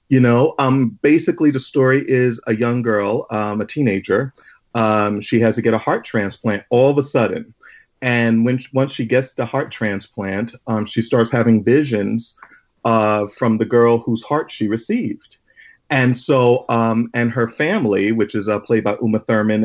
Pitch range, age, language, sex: 110-130 Hz, 40-59, English, male